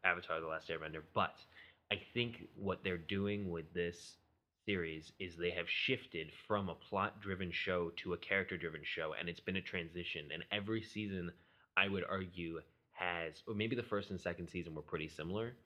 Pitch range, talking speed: 85-105 Hz, 180 wpm